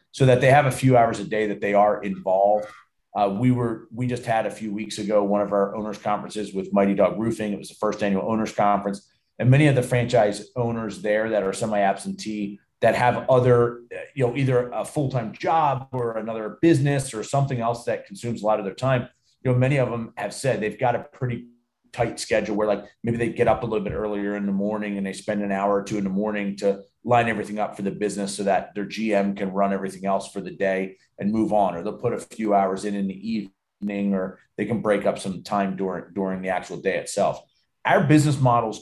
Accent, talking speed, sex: American, 240 wpm, male